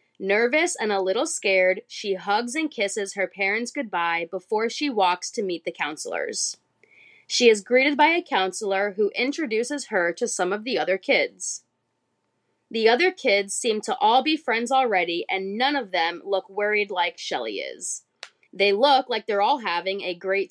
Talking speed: 175 wpm